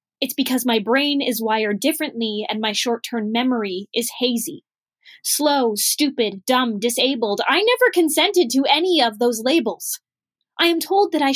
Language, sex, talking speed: English, female, 160 wpm